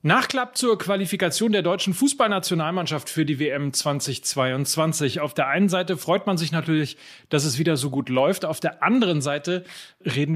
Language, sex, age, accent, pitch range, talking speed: German, male, 40-59, German, 135-180 Hz, 170 wpm